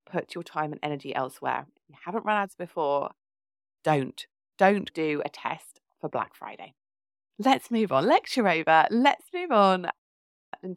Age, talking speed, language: 30-49, 160 wpm, English